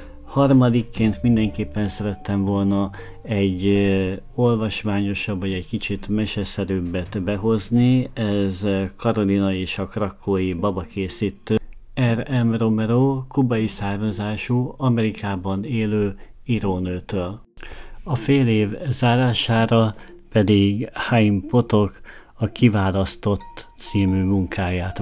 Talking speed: 85 wpm